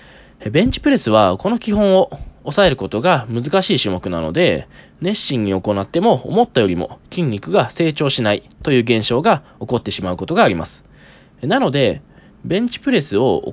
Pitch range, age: 120-190 Hz, 20-39